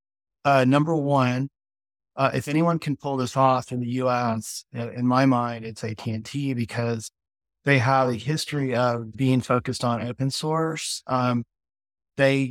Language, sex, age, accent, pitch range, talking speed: English, male, 30-49, American, 120-140 Hz, 160 wpm